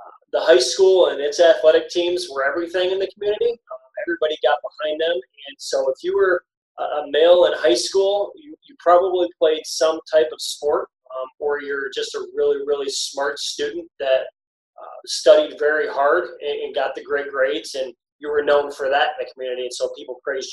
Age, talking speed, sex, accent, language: 20-39, 200 wpm, male, American, English